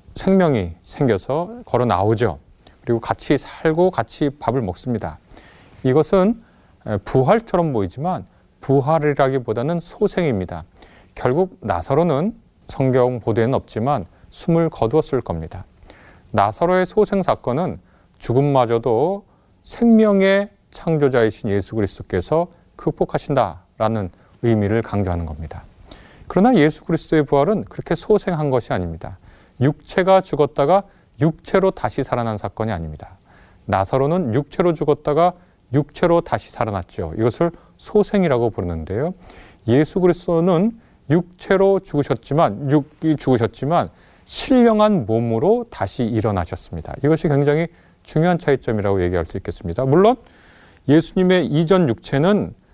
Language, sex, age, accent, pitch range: Korean, male, 30-49, native, 100-170 Hz